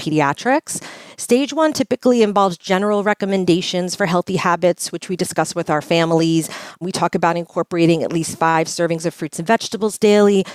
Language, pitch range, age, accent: English, 165-205 Hz, 40-59, American